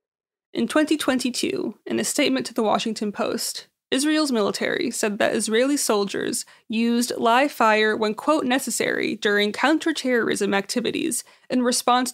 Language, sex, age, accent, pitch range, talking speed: English, female, 20-39, American, 230-295 Hz, 130 wpm